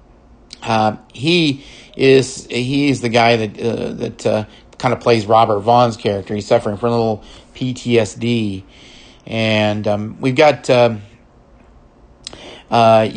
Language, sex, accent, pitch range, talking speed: English, male, American, 110-135 Hz, 130 wpm